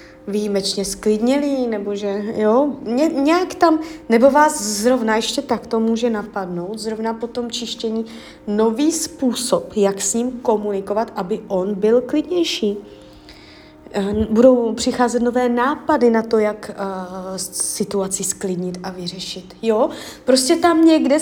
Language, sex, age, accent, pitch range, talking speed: Czech, female, 30-49, native, 200-255 Hz, 135 wpm